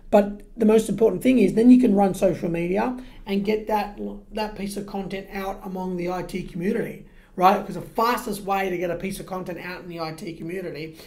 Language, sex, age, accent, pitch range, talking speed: English, male, 30-49, Australian, 175-205 Hz, 215 wpm